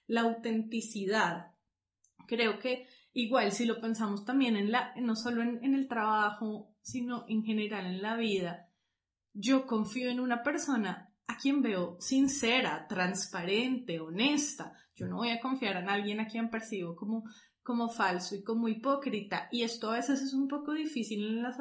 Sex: female